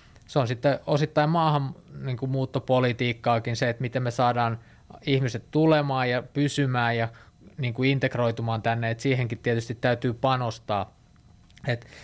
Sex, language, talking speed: male, Finnish, 130 wpm